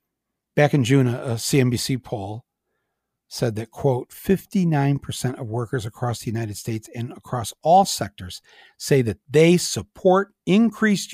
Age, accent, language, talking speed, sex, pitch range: 60-79, American, English, 135 wpm, male, 110-155 Hz